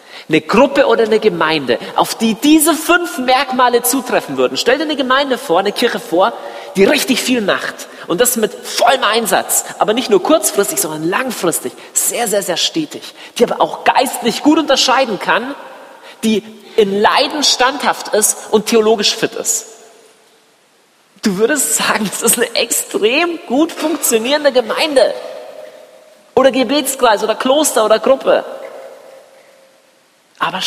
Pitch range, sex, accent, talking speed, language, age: 215-275 Hz, male, German, 140 wpm, German, 40-59